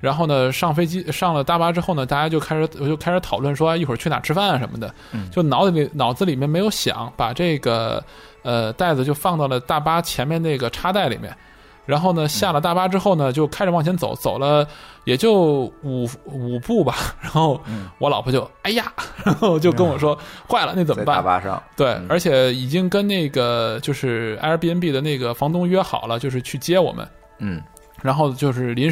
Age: 20-39